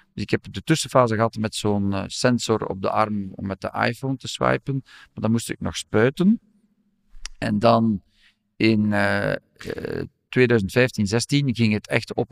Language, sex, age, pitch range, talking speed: Dutch, male, 50-69, 100-120 Hz, 155 wpm